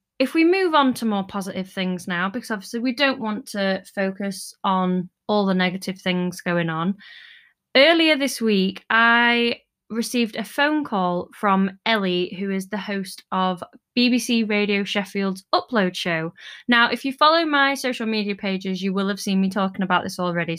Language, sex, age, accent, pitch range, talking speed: English, female, 20-39, British, 195-250 Hz, 175 wpm